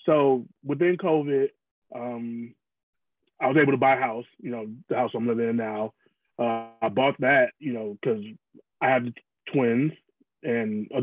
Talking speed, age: 170 wpm, 20-39